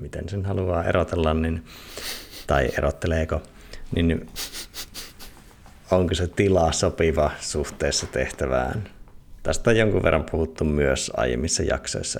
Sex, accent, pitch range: male, native, 75-90 Hz